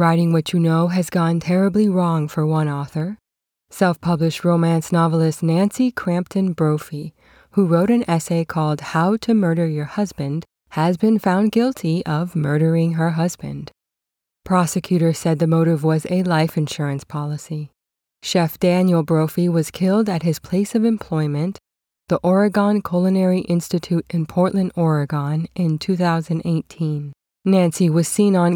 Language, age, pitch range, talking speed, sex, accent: English, 20-39, 155-185 Hz, 140 wpm, female, American